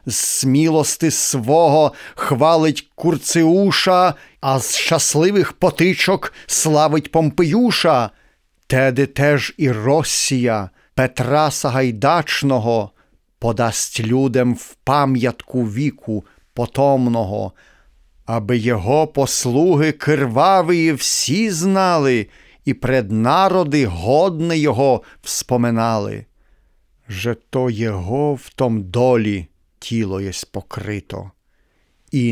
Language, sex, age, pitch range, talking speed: Ukrainian, male, 40-59, 115-150 Hz, 80 wpm